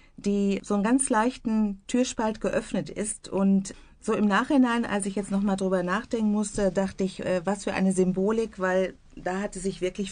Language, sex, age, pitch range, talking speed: German, female, 50-69, 185-220 Hz, 185 wpm